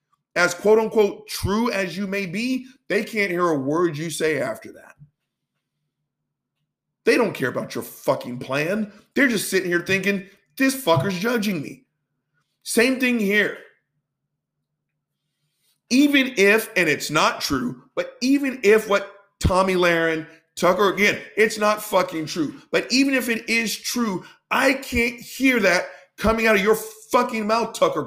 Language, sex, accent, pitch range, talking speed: English, male, American, 160-225 Hz, 150 wpm